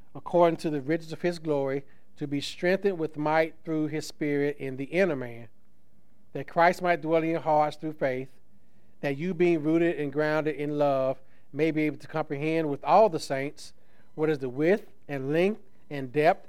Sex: male